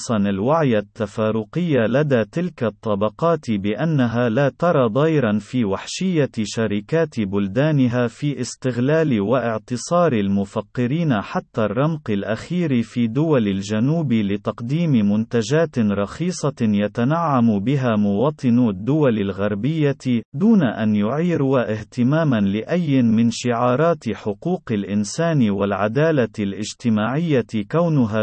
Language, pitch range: Arabic, 105-145 Hz